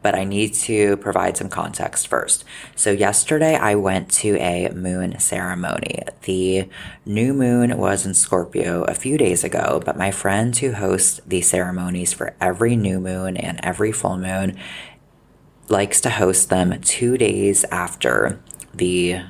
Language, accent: English, American